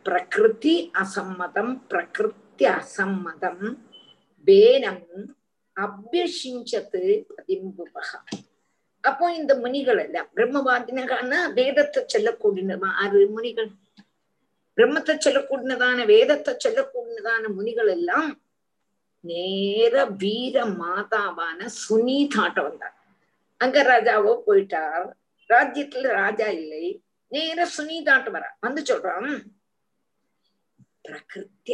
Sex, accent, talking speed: female, native, 60 wpm